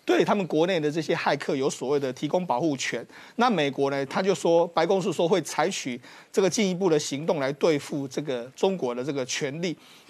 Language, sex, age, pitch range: Chinese, male, 30-49, 150-200 Hz